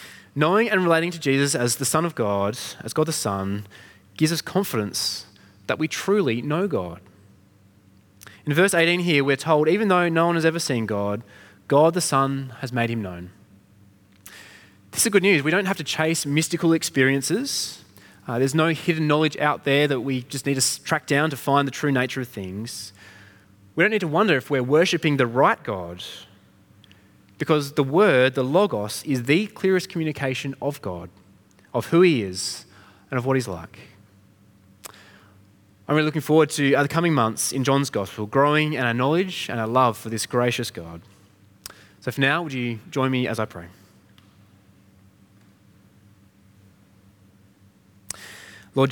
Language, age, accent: English, 20-39, Australian